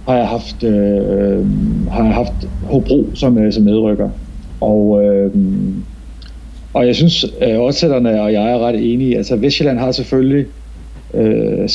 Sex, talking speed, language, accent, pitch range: male, 150 wpm, Danish, native, 100-130 Hz